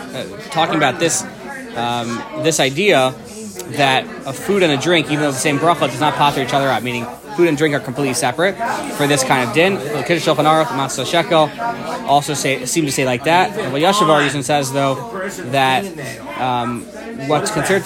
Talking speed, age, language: 180 wpm, 20-39, English